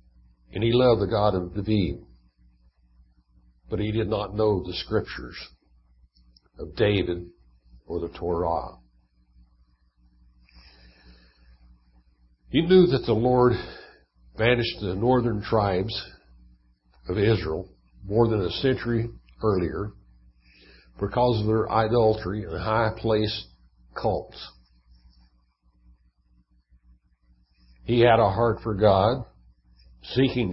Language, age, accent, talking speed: English, 60-79, American, 100 wpm